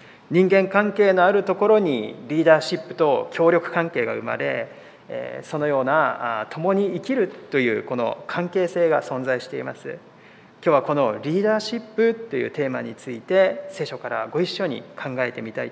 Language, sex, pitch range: Japanese, male, 150-210 Hz